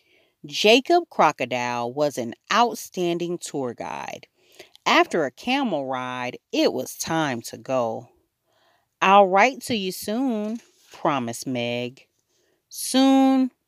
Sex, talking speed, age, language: female, 105 wpm, 40-59, English